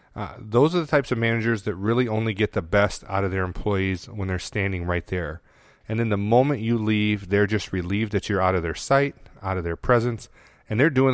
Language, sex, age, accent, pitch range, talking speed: English, male, 30-49, American, 95-115 Hz, 235 wpm